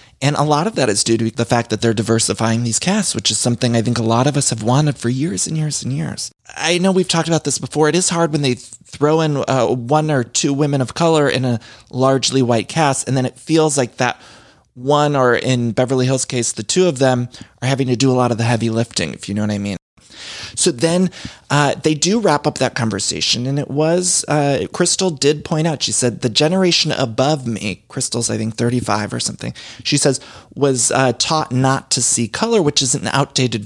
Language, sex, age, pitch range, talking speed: English, male, 30-49, 120-155 Hz, 235 wpm